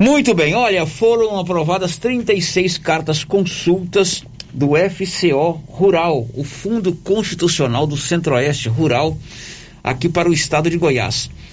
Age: 60-79